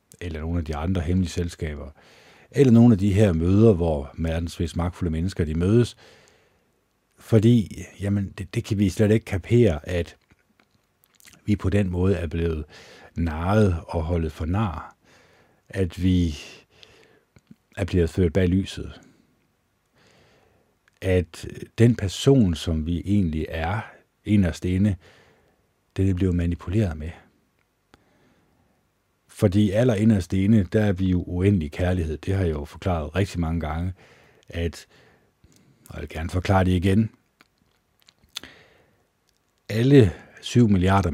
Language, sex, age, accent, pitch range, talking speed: Danish, male, 60-79, native, 85-100 Hz, 130 wpm